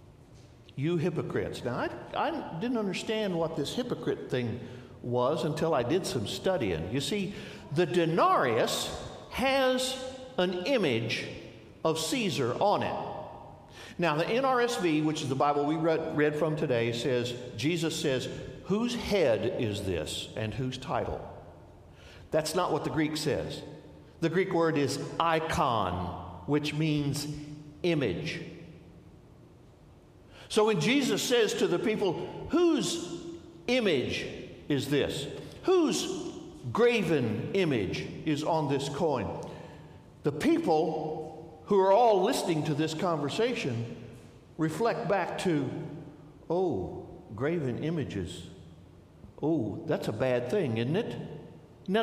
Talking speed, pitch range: 120 wpm, 125-205 Hz